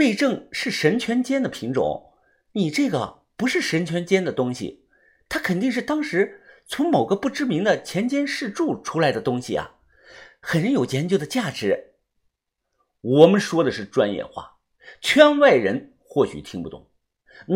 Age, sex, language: 50-69, male, Chinese